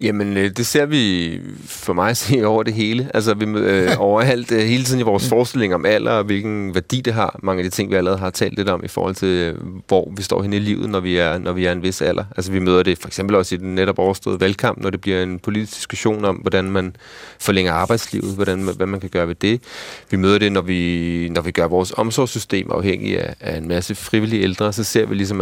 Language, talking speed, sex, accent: Danish, 250 wpm, male, native